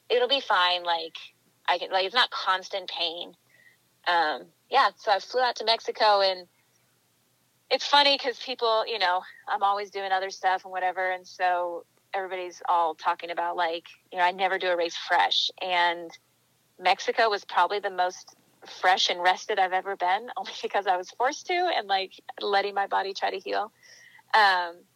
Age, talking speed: 30-49, 180 wpm